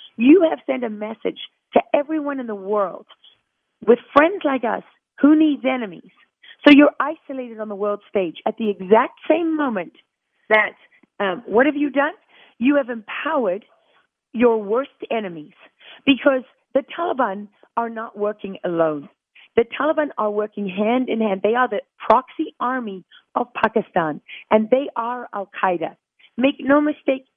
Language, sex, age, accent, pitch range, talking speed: English, female, 40-59, American, 210-270 Hz, 150 wpm